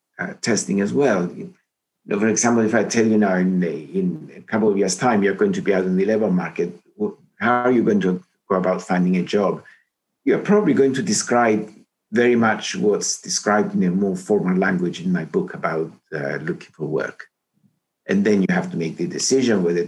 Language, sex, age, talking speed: English, male, 60-79, 205 wpm